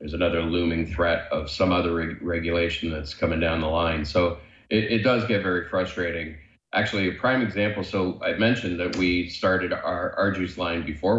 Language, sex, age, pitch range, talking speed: English, male, 30-49, 80-95 Hz, 195 wpm